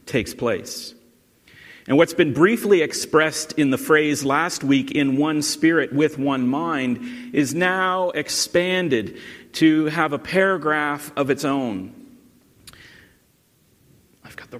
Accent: American